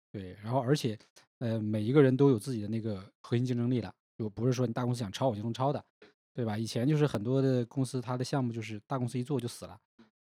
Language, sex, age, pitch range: Chinese, male, 20-39, 105-130 Hz